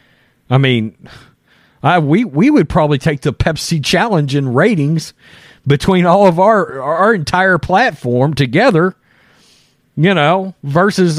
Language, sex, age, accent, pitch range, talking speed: English, male, 40-59, American, 135-200 Hz, 130 wpm